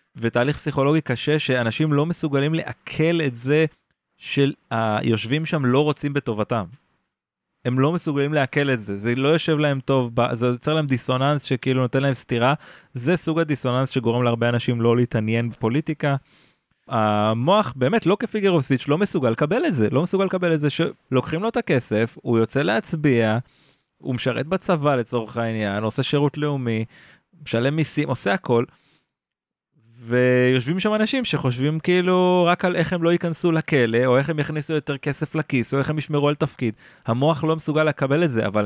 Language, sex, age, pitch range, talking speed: Hebrew, male, 30-49, 120-160 Hz, 160 wpm